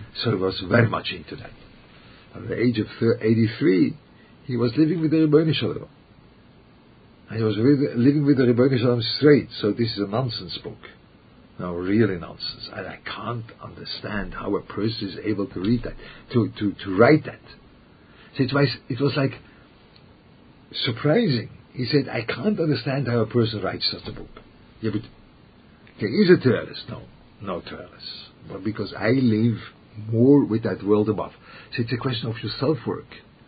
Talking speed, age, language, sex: 175 wpm, 50-69, English, male